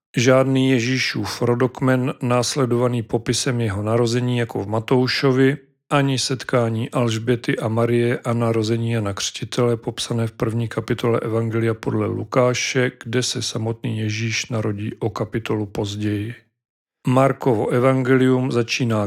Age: 40-59